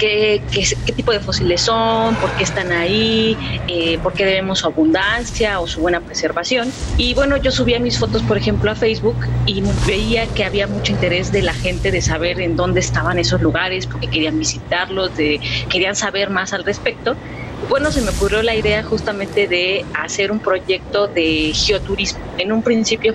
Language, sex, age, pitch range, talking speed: Spanish, female, 30-49, 155-215 Hz, 190 wpm